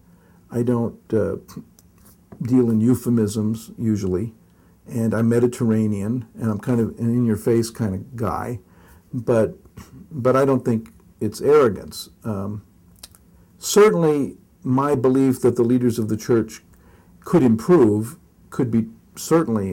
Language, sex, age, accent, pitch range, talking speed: English, male, 50-69, American, 105-125 Hz, 125 wpm